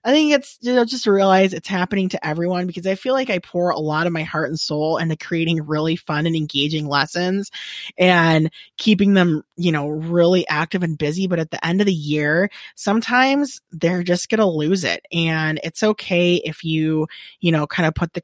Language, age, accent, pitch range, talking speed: English, 20-39, American, 150-195 Hz, 215 wpm